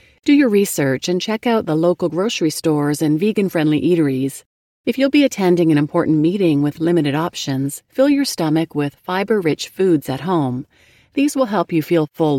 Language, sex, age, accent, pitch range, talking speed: English, female, 40-59, American, 145-200 Hz, 180 wpm